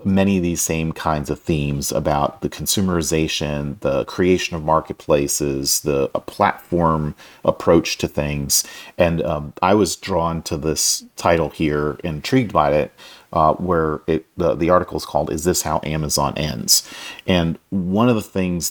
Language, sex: English, male